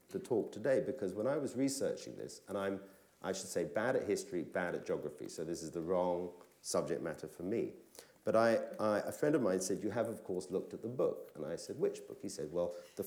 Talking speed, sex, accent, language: 240 wpm, male, British, English